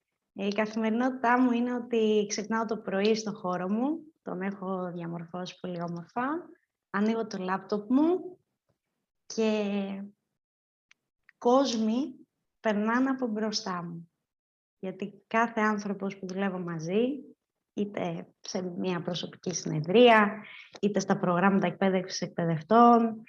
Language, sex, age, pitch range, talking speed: Greek, female, 20-39, 185-245 Hz, 110 wpm